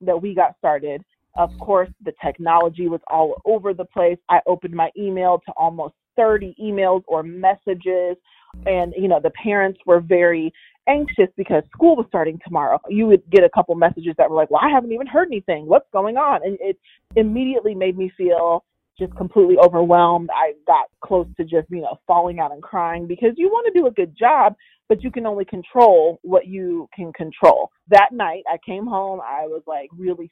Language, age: English, 30-49